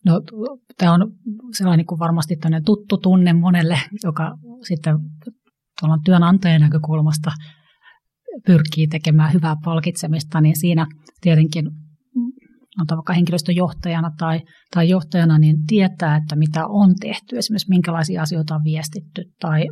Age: 30-49